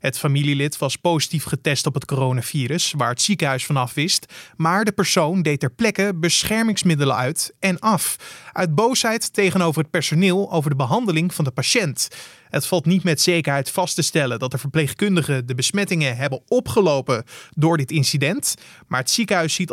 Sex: male